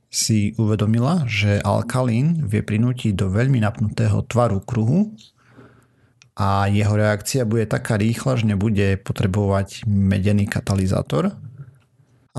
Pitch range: 100-120 Hz